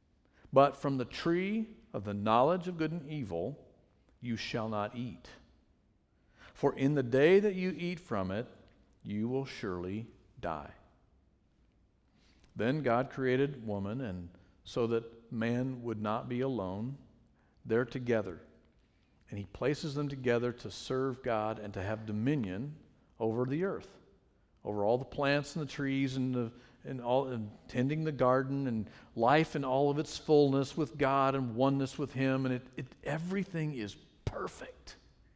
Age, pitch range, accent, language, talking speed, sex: 50-69, 105-145 Hz, American, English, 150 wpm, male